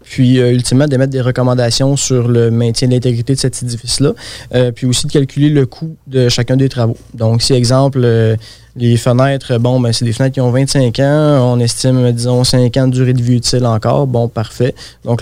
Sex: male